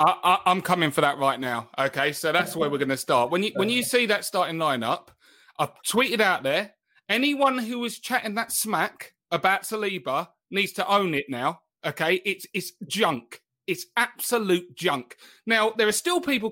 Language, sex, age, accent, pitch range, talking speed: English, male, 30-49, British, 200-285 Hz, 190 wpm